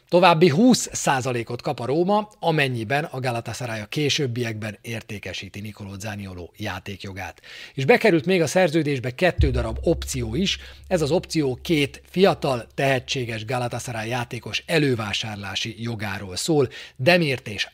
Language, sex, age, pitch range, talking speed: Hungarian, male, 40-59, 110-150 Hz, 120 wpm